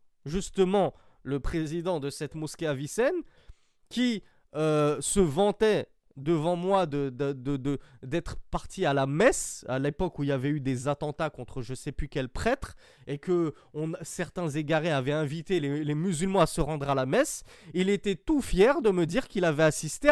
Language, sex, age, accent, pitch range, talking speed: French, male, 20-39, French, 145-215 Hz, 190 wpm